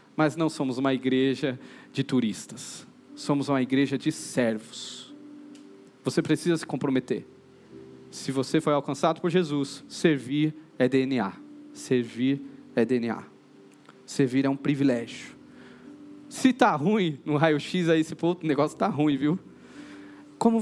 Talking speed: 130 wpm